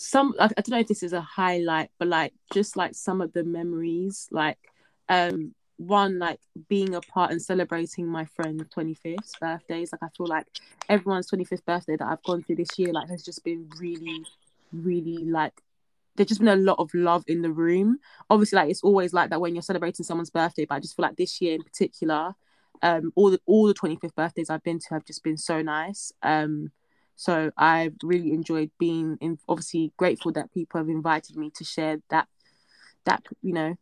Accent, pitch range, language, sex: British, 160-185 Hz, English, female